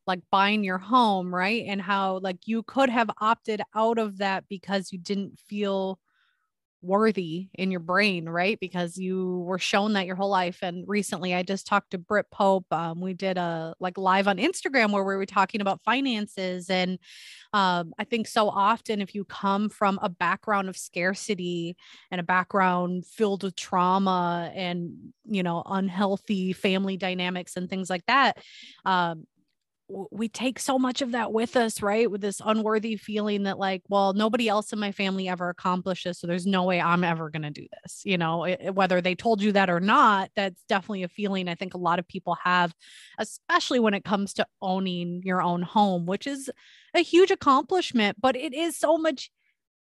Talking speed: 190 wpm